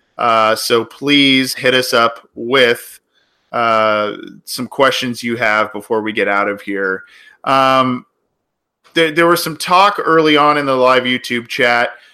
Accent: American